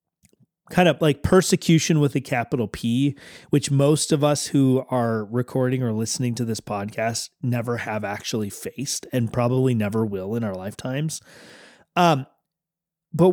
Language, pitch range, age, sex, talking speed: English, 125-170 Hz, 30-49, male, 150 wpm